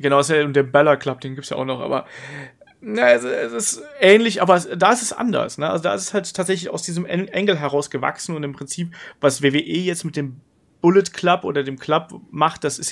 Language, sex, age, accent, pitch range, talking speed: German, male, 30-49, German, 140-170 Hz, 230 wpm